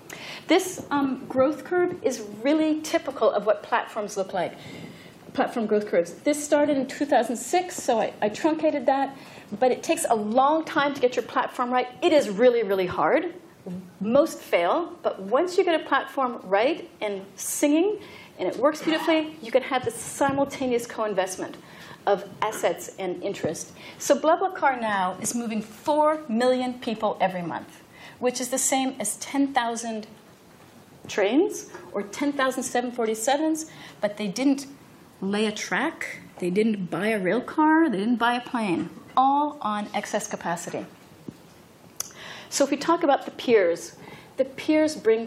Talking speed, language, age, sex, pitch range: 155 wpm, English, 40-59, female, 210-295 Hz